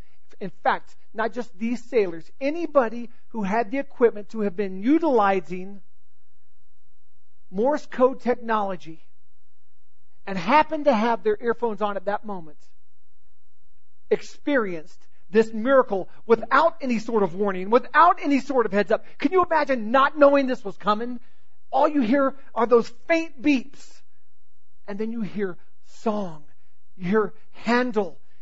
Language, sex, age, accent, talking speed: English, male, 40-59, American, 135 wpm